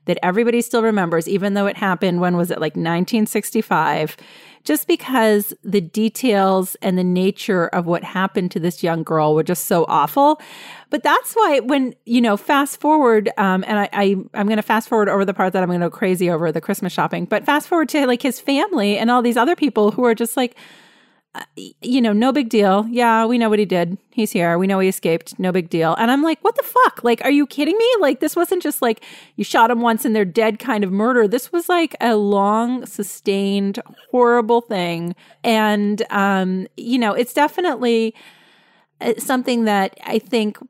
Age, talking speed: 30-49, 210 wpm